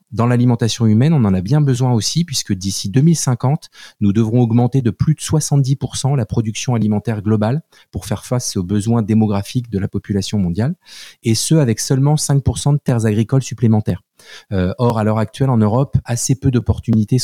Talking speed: 180 wpm